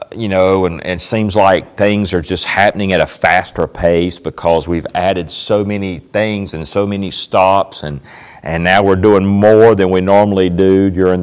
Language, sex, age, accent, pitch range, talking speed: English, male, 40-59, American, 90-115 Hz, 190 wpm